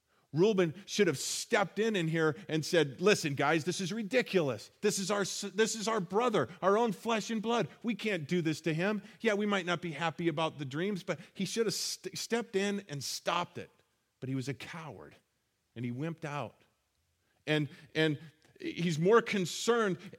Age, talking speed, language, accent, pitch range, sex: 40-59, 195 wpm, English, American, 155-205 Hz, male